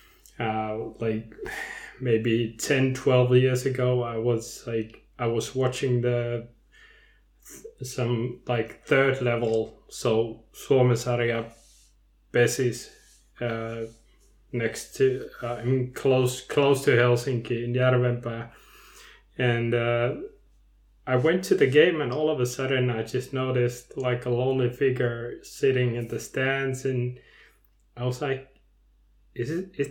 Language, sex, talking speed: English, male, 120 wpm